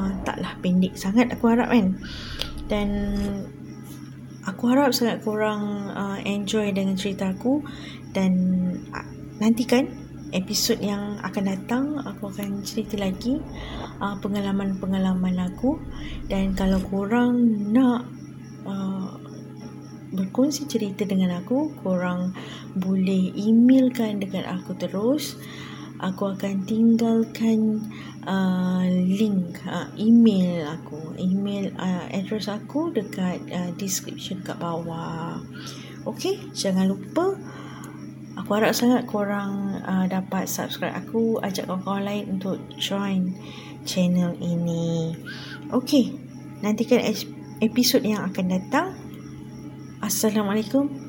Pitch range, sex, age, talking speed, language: 185-225 Hz, female, 20-39, 100 wpm, Malay